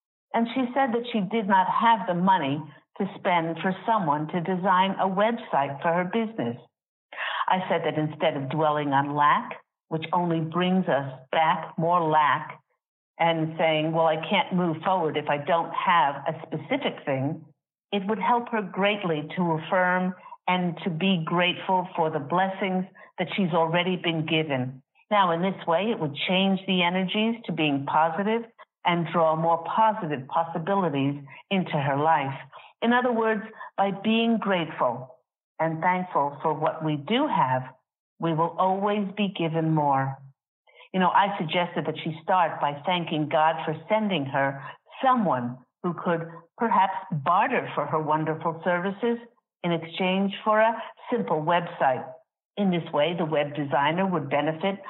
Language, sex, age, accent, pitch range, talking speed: English, female, 50-69, American, 155-195 Hz, 155 wpm